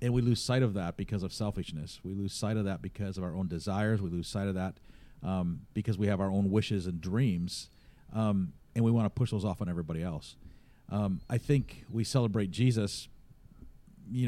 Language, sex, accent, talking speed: English, male, American, 215 wpm